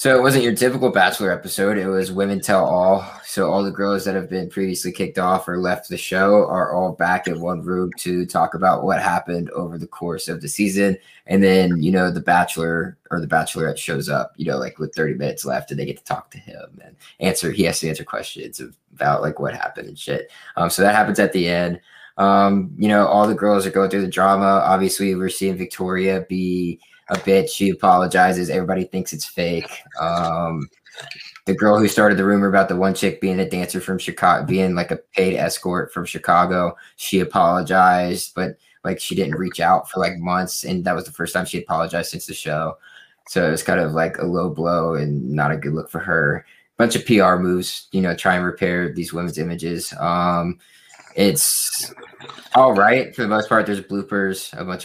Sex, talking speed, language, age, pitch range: male, 215 wpm, English, 20-39, 90-100 Hz